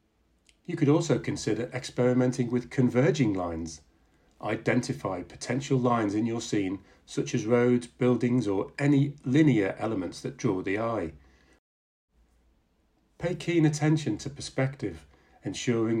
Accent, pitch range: British, 95-135 Hz